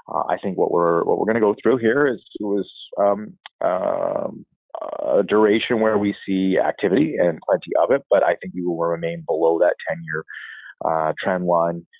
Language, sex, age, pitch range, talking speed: English, male, 30-49, 85-105 Hz, 200 wpm